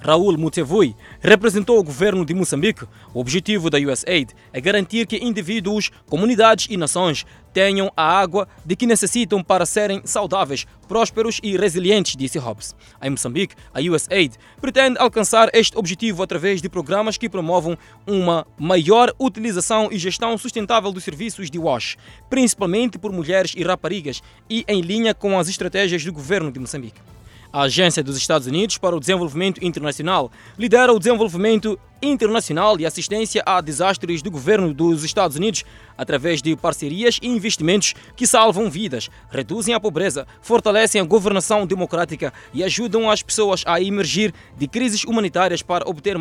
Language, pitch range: Portuguese, 165-215 Hz